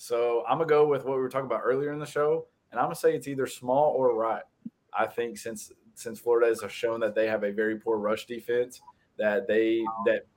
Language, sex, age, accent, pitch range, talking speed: English, male, 20-39, American, 110-135 Hz, 250 wpm